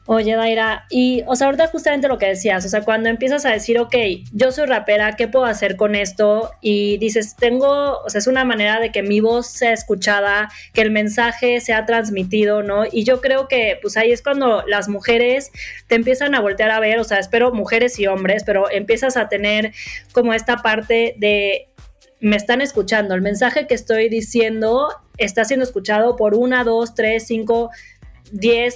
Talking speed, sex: 190 wpm, female